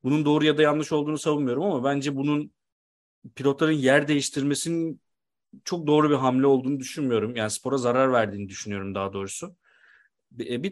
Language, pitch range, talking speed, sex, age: Turkish, 135-165 Hz, 150 wpm, male, 40-59